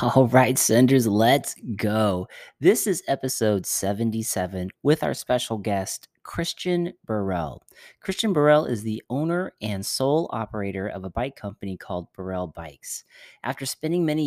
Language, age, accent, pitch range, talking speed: English, 30-49, American, 100-130 Hz, 140 wpm